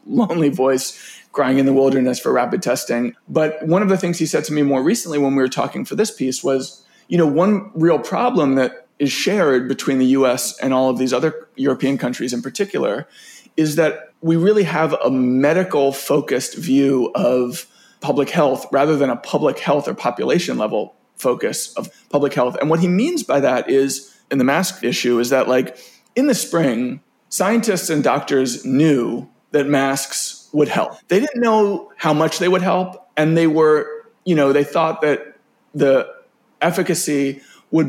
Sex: male